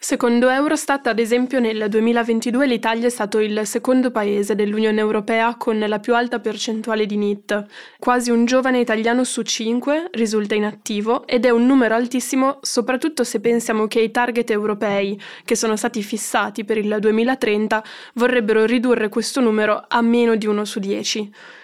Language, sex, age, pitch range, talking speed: Italian, female, 10-29, 215-240 Hz, 160 wpm